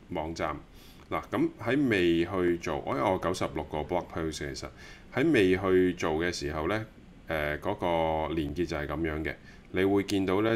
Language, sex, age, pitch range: Chinese, male, 30-49, 75-100 Hz